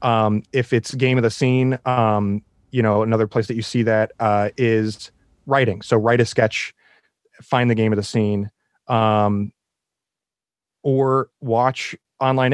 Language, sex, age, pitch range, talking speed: English, male, 30-49, 105-125 Hz, 160 wpm